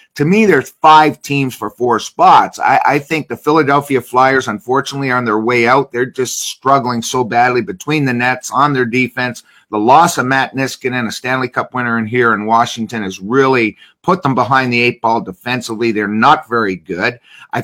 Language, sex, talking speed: English, male, 195 wpm